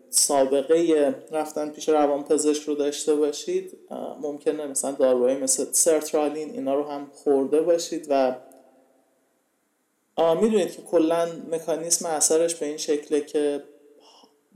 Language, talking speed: Persian, 120 wpm